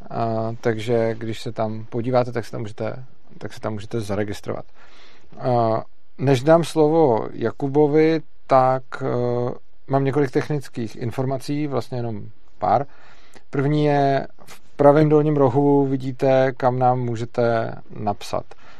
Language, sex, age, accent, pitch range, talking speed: Czech, male, 40-59, native, 115-140 Hz, 130 wpm